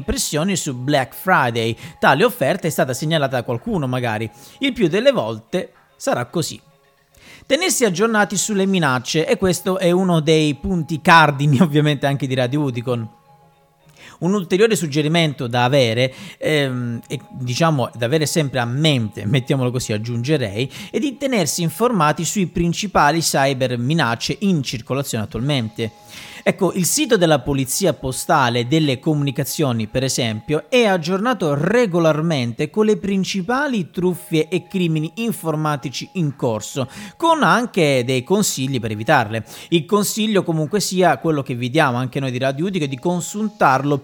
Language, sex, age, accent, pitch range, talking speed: Italian, male, 40-59, native, 135-180 Hz, 140 wpm